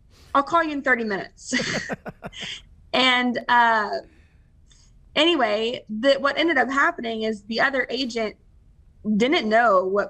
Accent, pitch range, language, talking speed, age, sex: American, 195-245 Hz, English, 120 wpm, 20-39, female